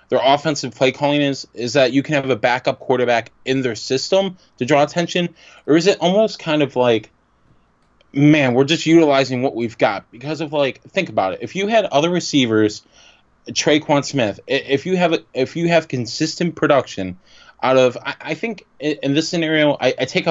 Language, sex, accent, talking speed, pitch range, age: English, male, American, 185 wpm, 125-160 Hz, 20-39